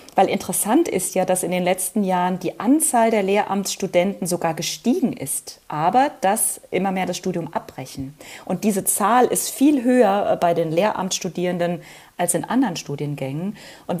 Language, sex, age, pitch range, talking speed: German, female, 30-49, 175-220 Hz, 160 wpm